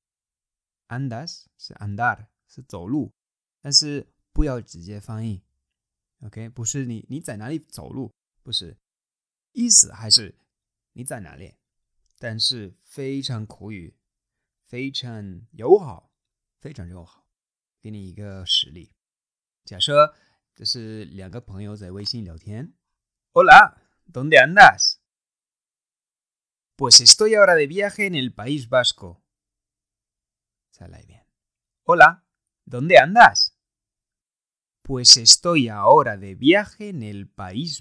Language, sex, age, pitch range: Chinese, male, 20-39, 95-135 Hz